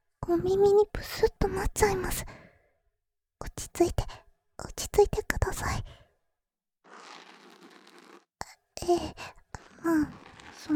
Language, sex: Japanese, male